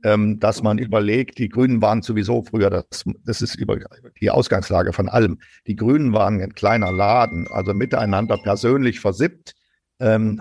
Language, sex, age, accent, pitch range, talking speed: German, male, 50-69, German, 105-130 Hz, 155 wpm